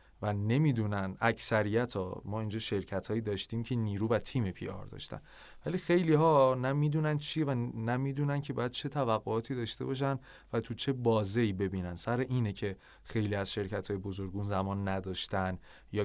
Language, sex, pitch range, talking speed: Persian, male, 100-130 Hz, 170 wpm